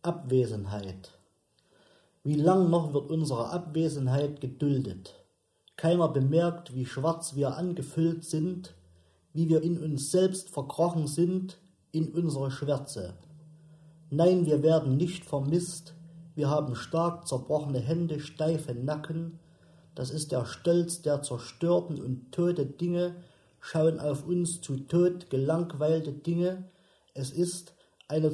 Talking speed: 120 wpm